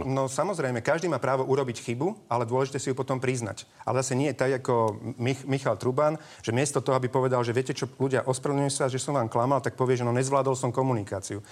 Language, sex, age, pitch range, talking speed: Slovak, male, 40-59, 125-145 Hz, 230 wpm